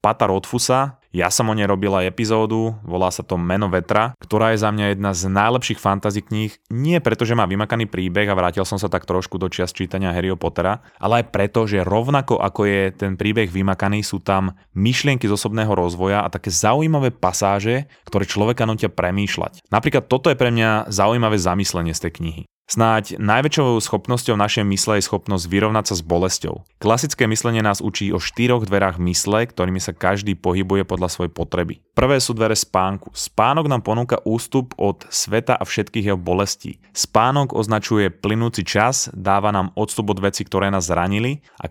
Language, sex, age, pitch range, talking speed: Slovak, male, 20-39, 95-115 Hz, 180 wpm